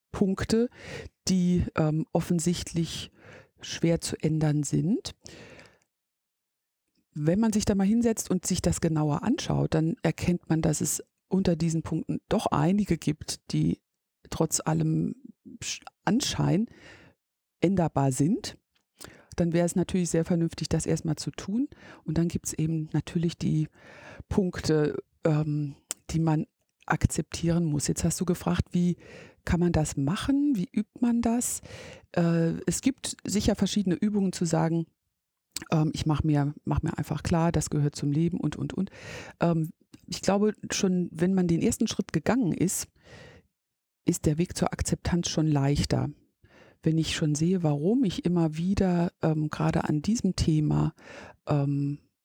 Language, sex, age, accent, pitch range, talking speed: German, female, 50-69, German, 155-190 Hz, 145 wpm